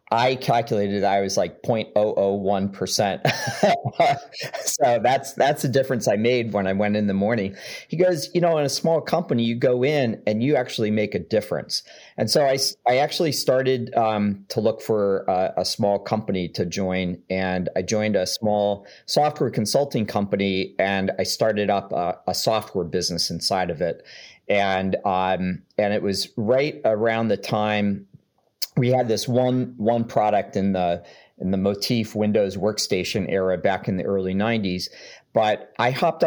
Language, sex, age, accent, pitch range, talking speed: English, male, 40-59, American, 95-115 Hz, 170 wpm